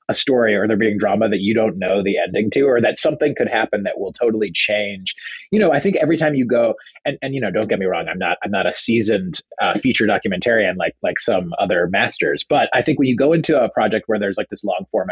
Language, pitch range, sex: English, 115-155 Hz, male